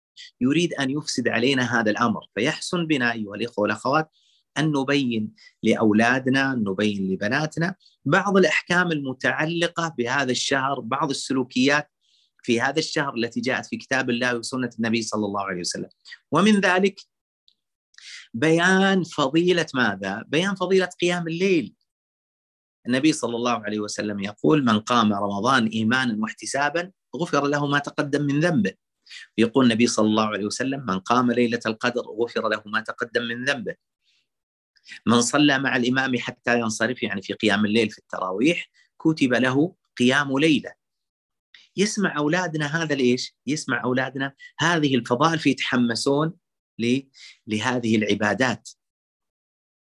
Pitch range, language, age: 110-150 Hz, Arabic, 30-49